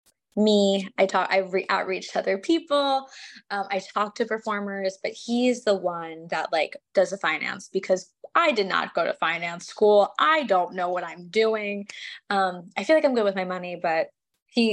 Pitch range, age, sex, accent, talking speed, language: 185-220 Hz, 20-39, female, American, 195 wpm, English